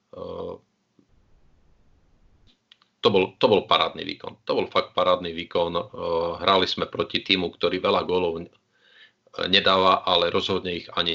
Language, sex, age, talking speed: Slovak, male, 40-59, 125 wpm